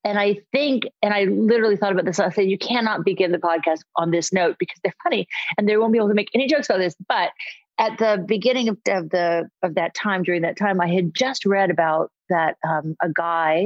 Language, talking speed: English, 235 wpm